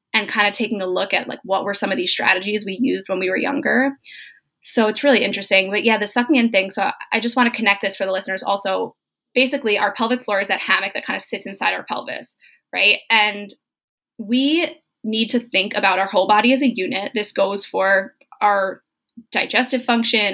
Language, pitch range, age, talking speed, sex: English, 200-255 Hz, 10-29, 220 wpm, female